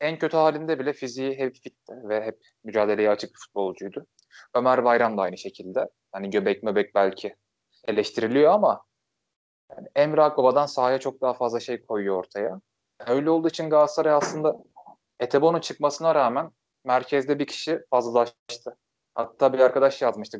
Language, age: Turkish, 20-39